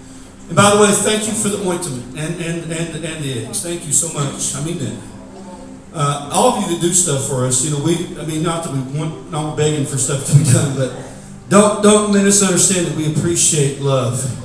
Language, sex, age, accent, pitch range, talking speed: English, male, 40-59, American, 140-205 Hz, 235 wpm